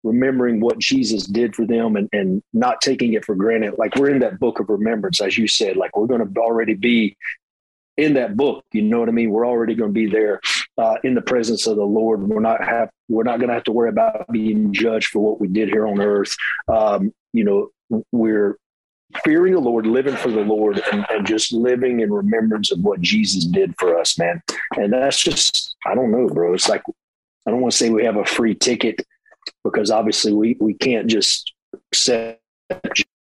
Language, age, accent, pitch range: English, 40-59, American, 110-135 Hz